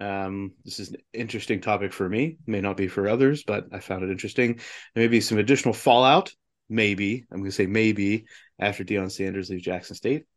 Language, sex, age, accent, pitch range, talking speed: English, male, 30-49, American, 100-130 Hz, 195 wpm